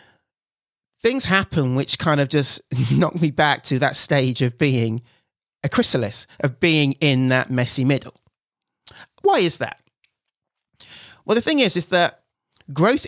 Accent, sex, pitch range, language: British, male, 130-175 Hz, English